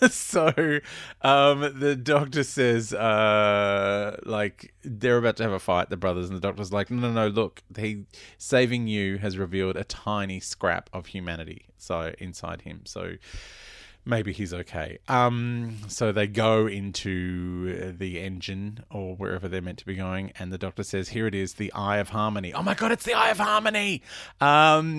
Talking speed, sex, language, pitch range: 180 wpm, male, English, 95-125 Hz